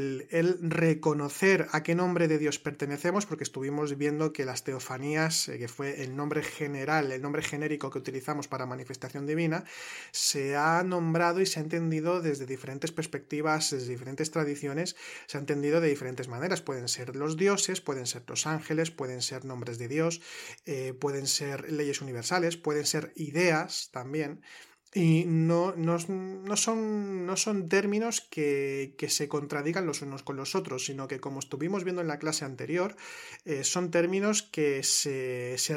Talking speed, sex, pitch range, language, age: 170 wpm, male, 135-165 Hz, Spanish, 30-49